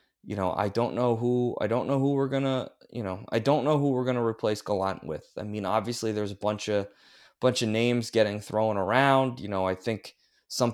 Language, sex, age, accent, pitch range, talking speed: English, male, 20-39, American, 105-130 Hz, 240 wpm